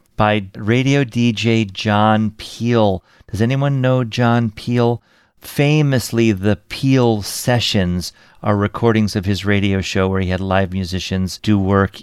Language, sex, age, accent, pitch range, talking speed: English, male, 40-59, American, 100-120 Hz, 135 wpm